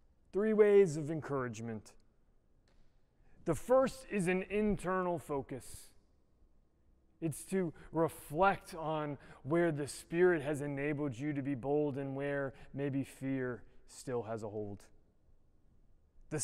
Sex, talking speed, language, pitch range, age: male, 115 wpm, English, 120-165 Hz, 30-49